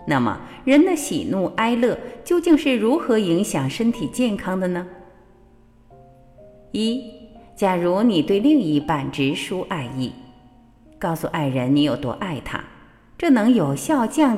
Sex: female